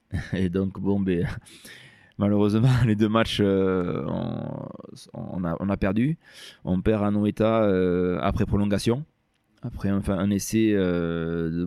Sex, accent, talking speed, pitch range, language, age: male, French, 150 wpm, 95-110 Hz, French, 20-39